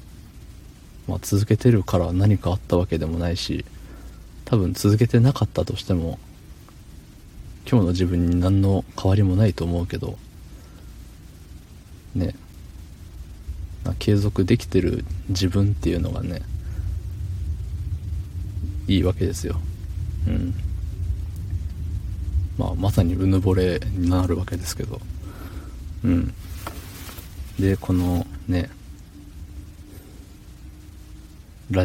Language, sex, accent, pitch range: Japanese, male, native, 85-95 Hz